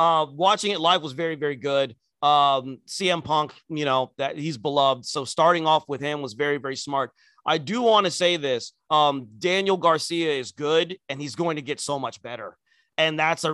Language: English